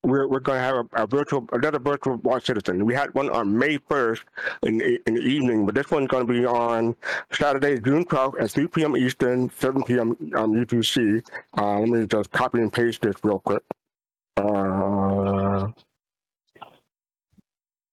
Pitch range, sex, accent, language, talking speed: 115-140 Hz, male, American, English, 165 wpm